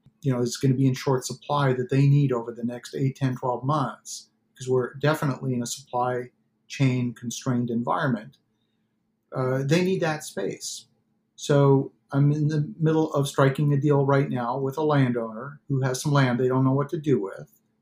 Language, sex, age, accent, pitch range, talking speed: English, male, 50-69, American, 130-145 Hz, 195 wpm